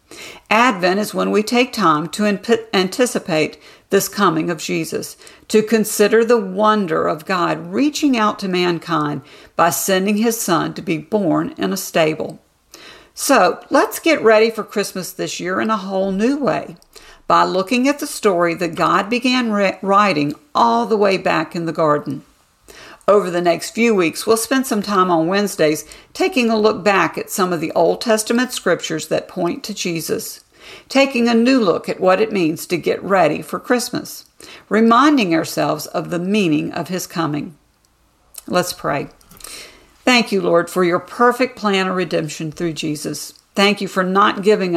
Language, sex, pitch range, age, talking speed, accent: English, female, 170-225 Hz, 50-69, 170 wpm, American